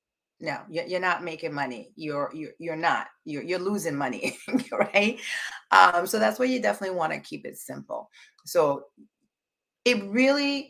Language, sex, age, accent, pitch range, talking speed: English, female, 30-49, American, 165-245 Hz, 155 wpm